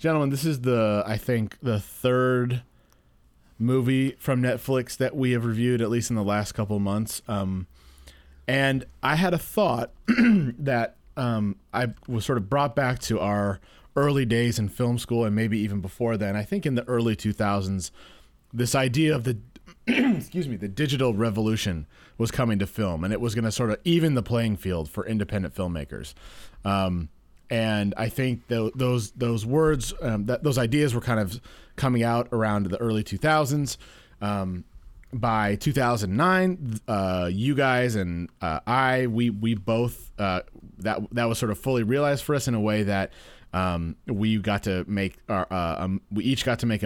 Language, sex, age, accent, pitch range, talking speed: English, male, 30-49, American, 100-125 Hz, 180 wpm